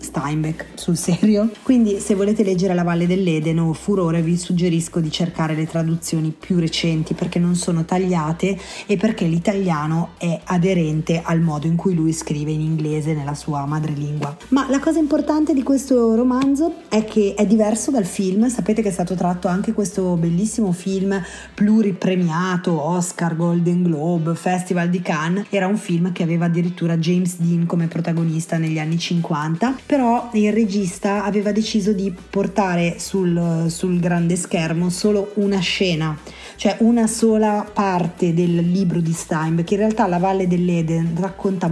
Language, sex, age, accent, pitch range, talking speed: Italian, female, 30-49, native, 170-210 Hz, 160 wpm